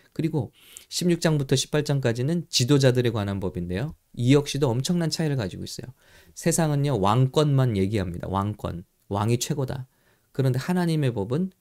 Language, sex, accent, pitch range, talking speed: English, male, Korean, 105-150 Hz, 110 wpm